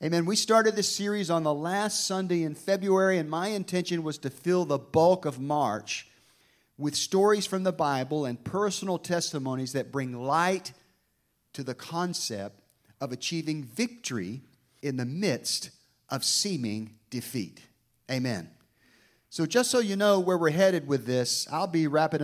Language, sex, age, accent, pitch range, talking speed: English, male, 50-69, American, 135-180 Hz, 155 wpm